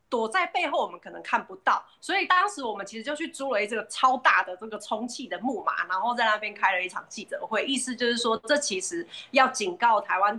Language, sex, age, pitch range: Chinese, female, 20-39, 200-275 Hz